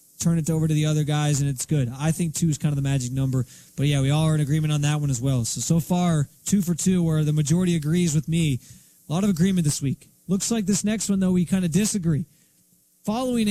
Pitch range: 150-180 Hz